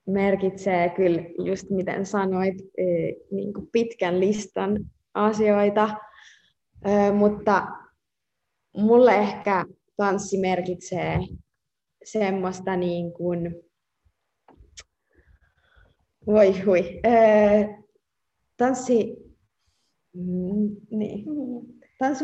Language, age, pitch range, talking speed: Finnish, 20-39, 180-220 Hz, 60 wpm